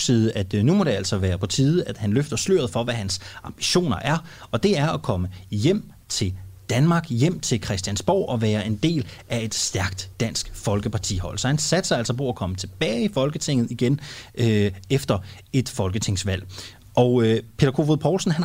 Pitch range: 105-145 Hz